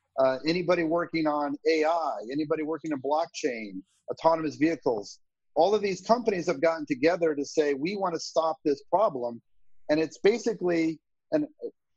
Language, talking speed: English, 150 wpm